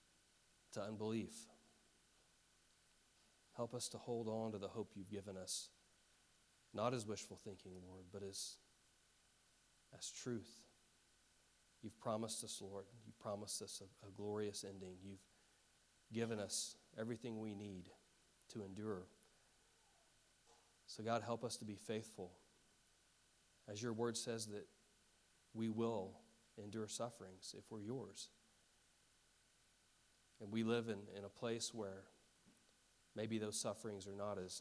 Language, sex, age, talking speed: English, male, 40-59, 125 wpm